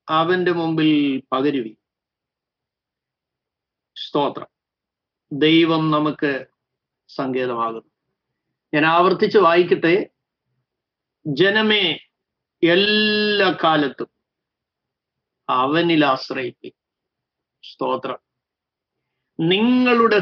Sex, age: male, 50-69